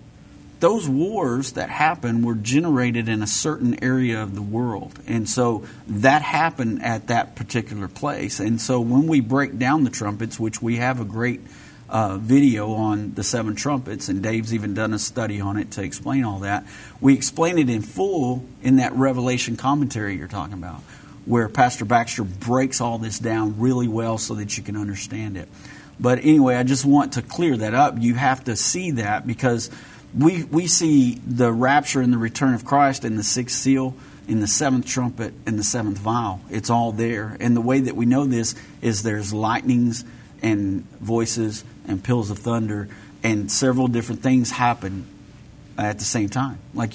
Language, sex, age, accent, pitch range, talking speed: English, male, 50-69, American, 110-130 Hz, 185 wpm